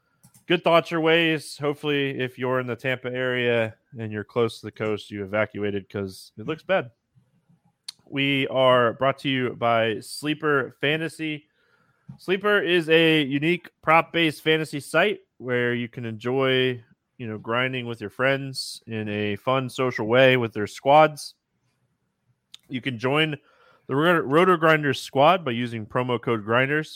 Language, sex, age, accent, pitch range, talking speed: English, male, 20-39, American, 115-150 Hz, 155 wpm